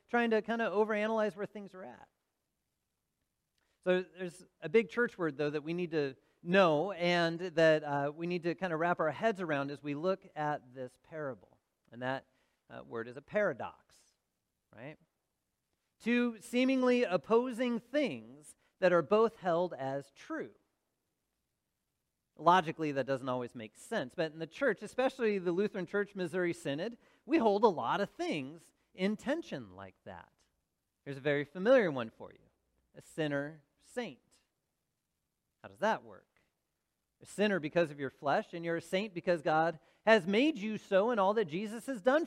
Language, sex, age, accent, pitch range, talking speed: English, male, 40-59, American, 150-220 Hz, 165 wpm